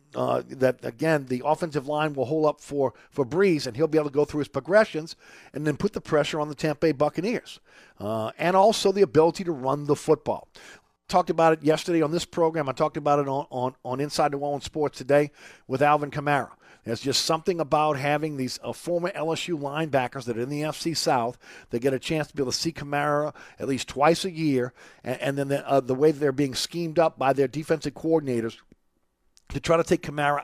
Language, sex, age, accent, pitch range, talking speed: English, male, 50-69, American, 135-160 Hz, 215 wpm